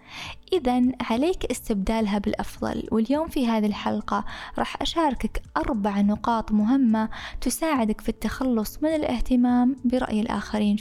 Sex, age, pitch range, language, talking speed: female, 20-39, 215-270 Hz, Arabic, 110 wpm